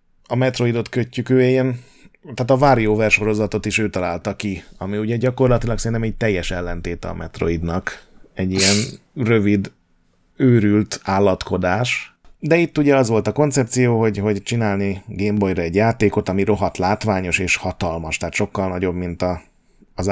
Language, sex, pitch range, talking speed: Hungarian, male, 95-120 Hz, 155 wpm